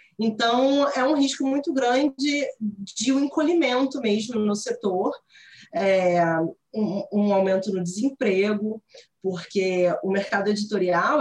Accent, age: Brazilian, 20-39